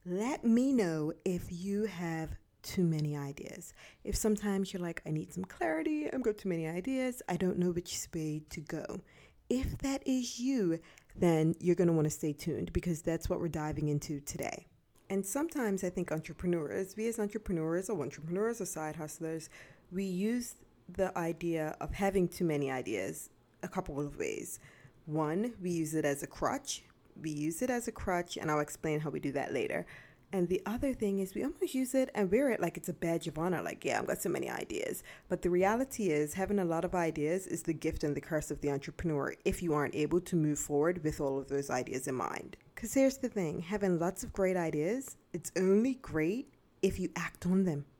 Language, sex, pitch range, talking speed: English, female, 155-200 Hz, 210 wpm